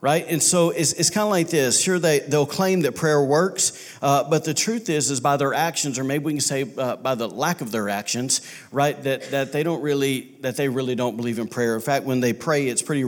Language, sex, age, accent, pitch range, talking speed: English, male, 40-59, American, 115-145 Hz, 260 wpm